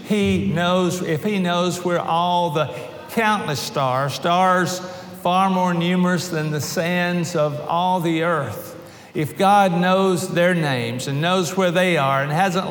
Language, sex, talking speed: English, male, 155 wpm